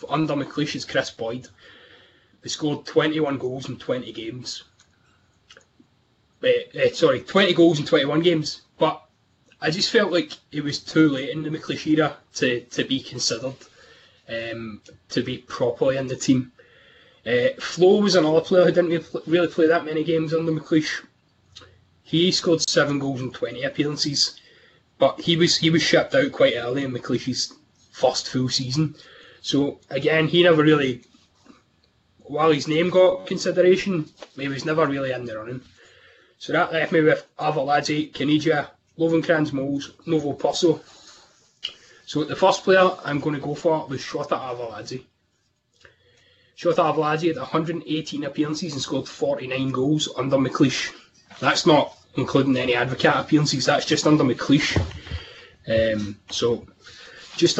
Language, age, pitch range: English, 20-39, 130-165 Hz